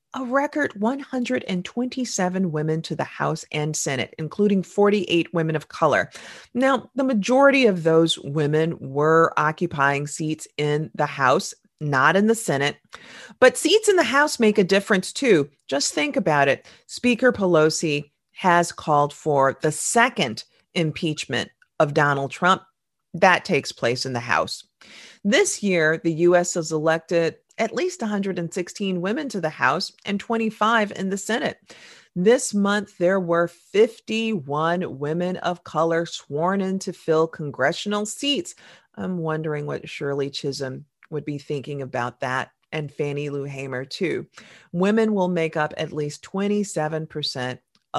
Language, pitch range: English, 150-205 Hz